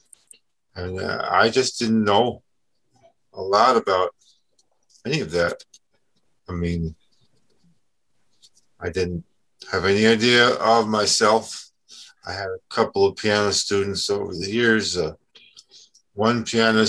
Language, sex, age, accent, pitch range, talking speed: English, male, 50-69, American, 95-120 Hz, 115 wpm